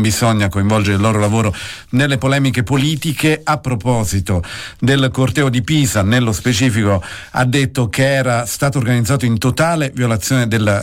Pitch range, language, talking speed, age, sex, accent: 105-135 Hz, Italian, 145 wpm, 50-69, male, native